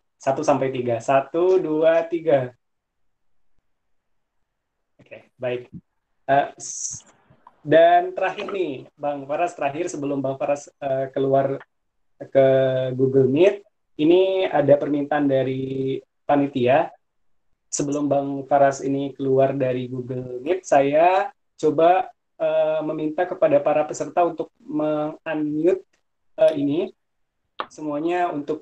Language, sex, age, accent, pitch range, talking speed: Indonesian, male, 20-39, native, 140-175 Hz, 105 wpm